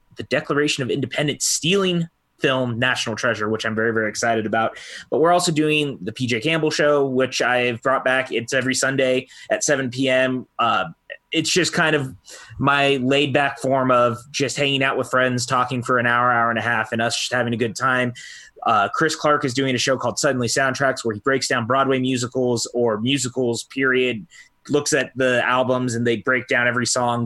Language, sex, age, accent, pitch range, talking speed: English, male, 20-39, American, 120-140 Hz, 200 wpm